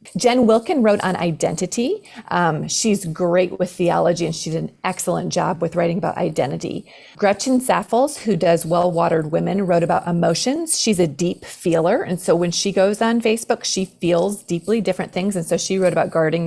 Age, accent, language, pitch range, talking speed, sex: 30-49, American, English, 170-205 Hz, 190 wpm, female